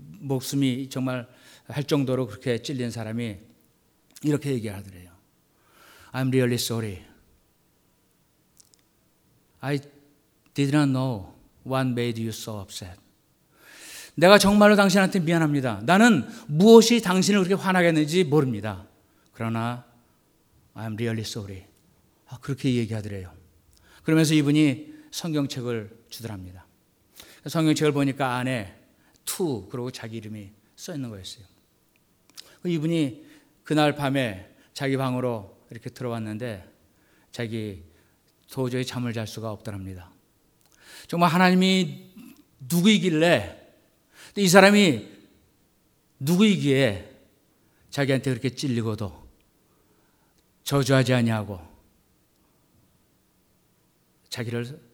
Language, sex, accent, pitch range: Korean, male, native, 110-150 Hz